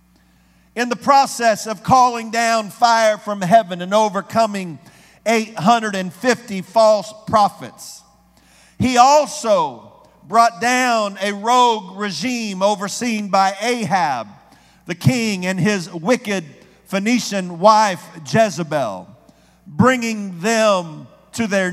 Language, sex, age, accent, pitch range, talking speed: English, male, 50-69, American, 185-240 Hz, 100 wpm